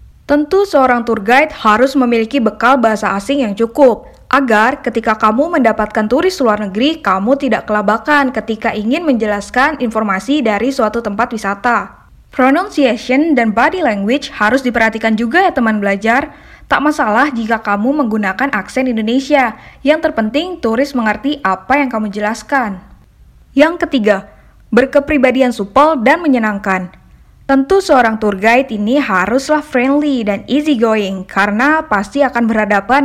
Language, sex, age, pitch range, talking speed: Indonesian, female, 10-29, 215-275 Hz, 135 wpm